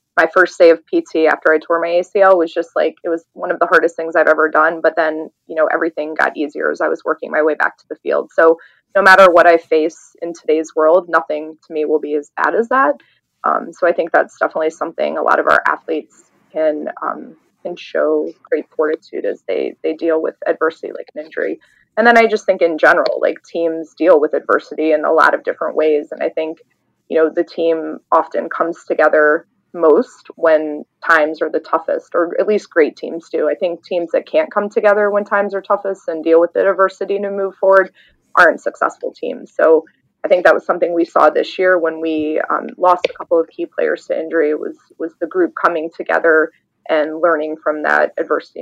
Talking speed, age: 220 wpm, 20-39